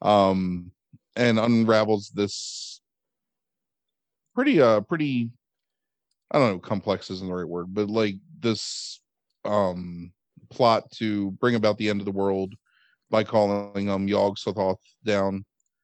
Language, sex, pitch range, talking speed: English, male, 95-120 Hz, 130 wpm